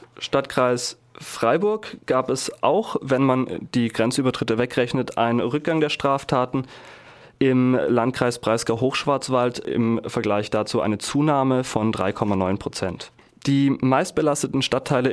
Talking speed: 115 wpm